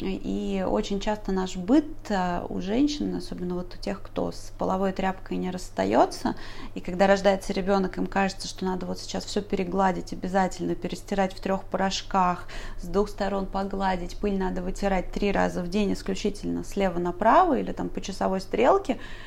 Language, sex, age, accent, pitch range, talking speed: Russian, female, 30-49, native, 180-210 Hz, 165 wpm